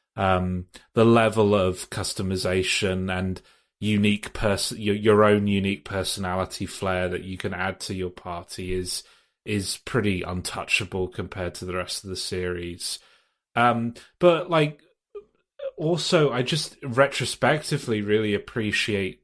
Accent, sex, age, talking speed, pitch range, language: British, male, 30-49, 130 wpm, 95-115 Hz, English